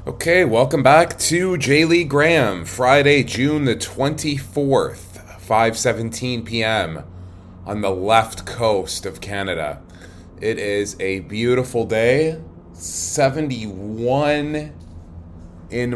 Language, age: English, 20-39